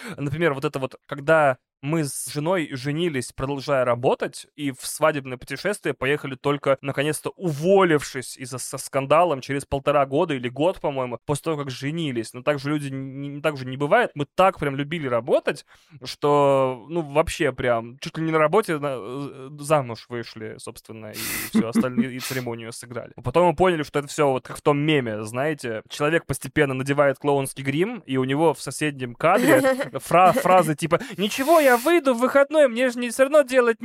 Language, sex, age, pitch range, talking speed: Russian, male, 20-39, 130-180 Hz, 180 wpm